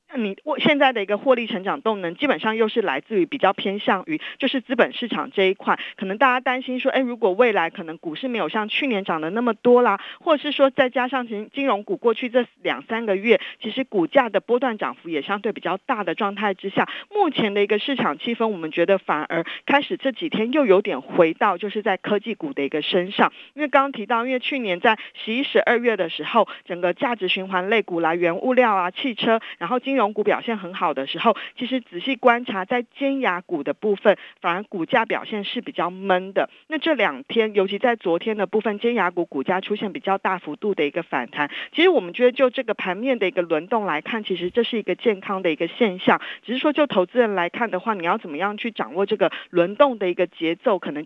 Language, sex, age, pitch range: Chinese, female, 40-59, 185-255 Hz